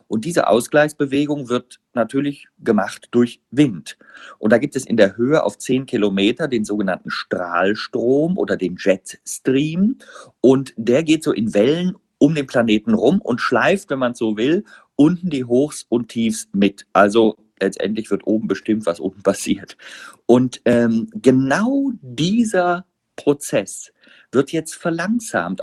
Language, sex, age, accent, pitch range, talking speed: German, male, 50-69, German, 115-170 Hz, 145 wpm